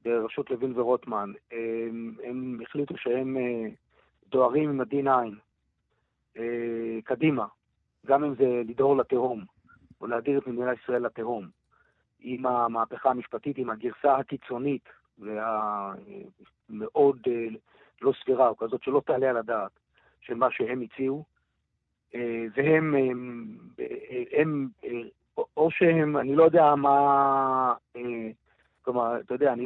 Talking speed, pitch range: 105 wpm, 115-140 Hz